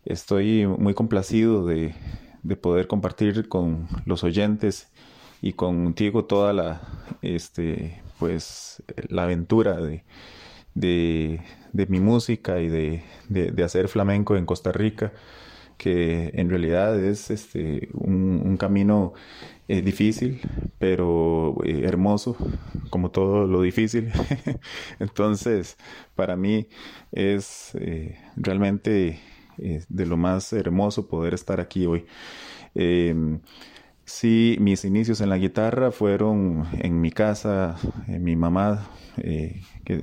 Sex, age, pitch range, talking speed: male, 30-49, 85-105 Hz, 115 wpm